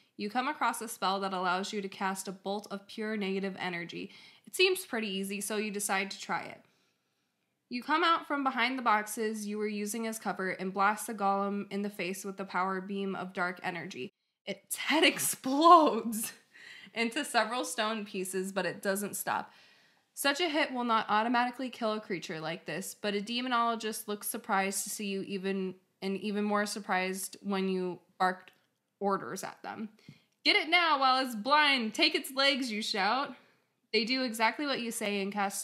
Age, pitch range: 20-39, 190-230 Hz